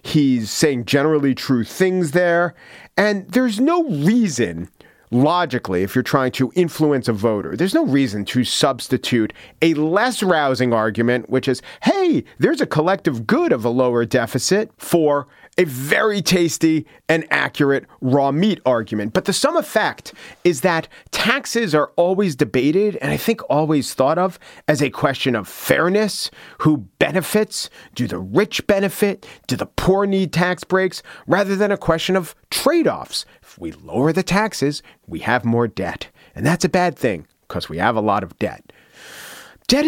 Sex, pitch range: male, 130-190 Hz